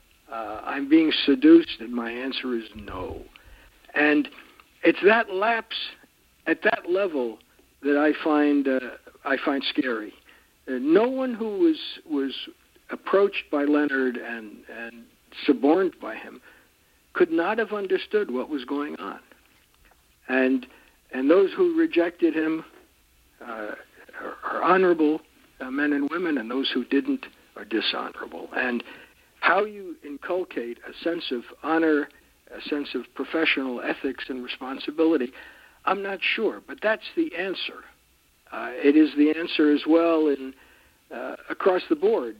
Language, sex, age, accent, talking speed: English, male, 60-79, American, 140 wpm